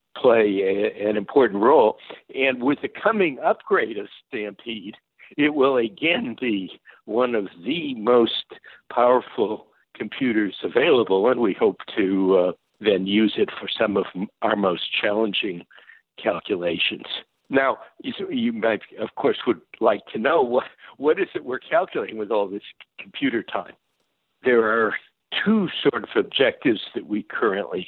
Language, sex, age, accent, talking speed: English, male, 60-79, American, 145 wpm